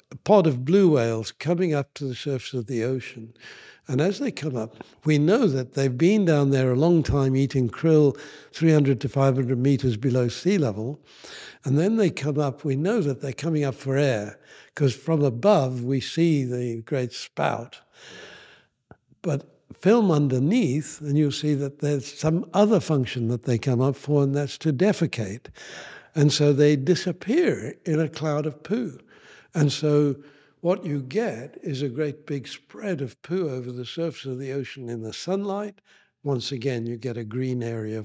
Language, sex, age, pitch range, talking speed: English, male, 60-79, 125-155 Hz, 180 wpm